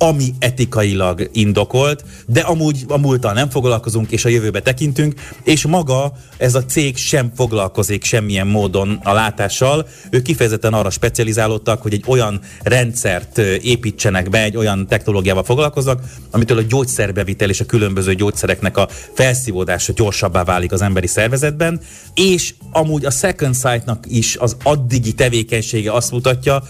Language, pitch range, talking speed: Hungarian, 105-130 Hz, 140 wpm